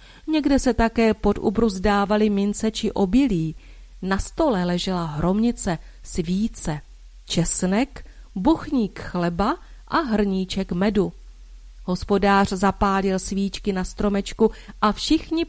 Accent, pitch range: native, 180-230 Hz